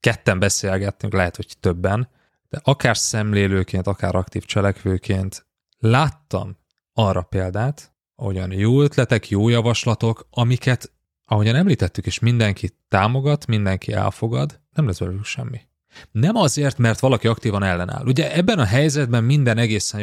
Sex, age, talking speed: male, 30-49, 130 wpm